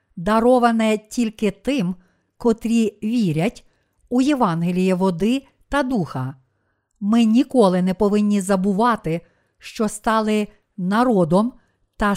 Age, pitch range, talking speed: 50-69, 180-230 Hz, 95 wpm